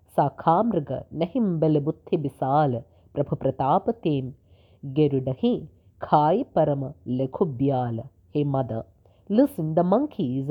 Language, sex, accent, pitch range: English, female, Indian, 130-165 Hz